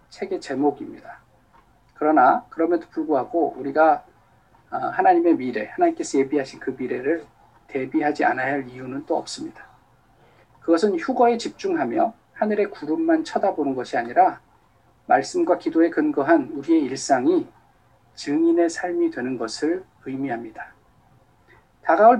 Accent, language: native, Korean